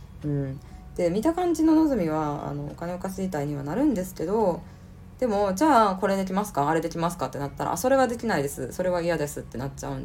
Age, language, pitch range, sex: 20-39, Japanese, 140-200 Hz, female